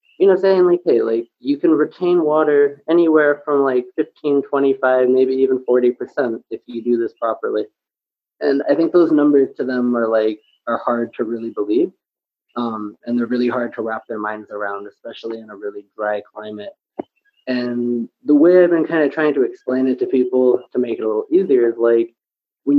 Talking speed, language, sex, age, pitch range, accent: 195 wpm, English, male, 20-39, 115-150 Hz, American